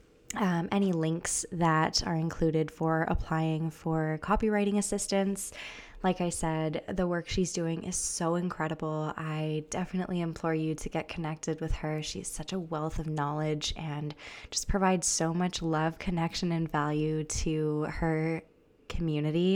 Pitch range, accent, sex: 155-180 Hz, American, female